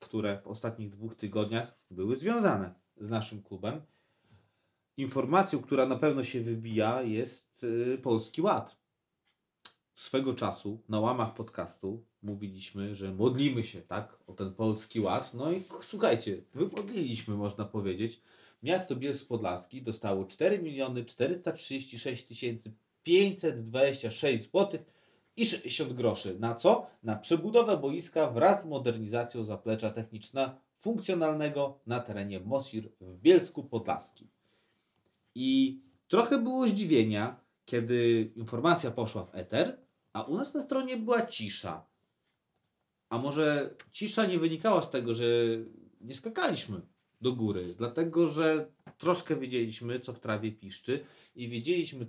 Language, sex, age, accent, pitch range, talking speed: Polish, male, 30-49, native, 110-140 Hz, 120 wpm